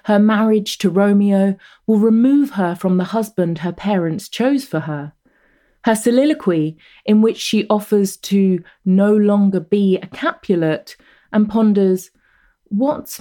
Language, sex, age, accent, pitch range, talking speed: English, female, 30-49, British, 185-240 Hz, 135 wpm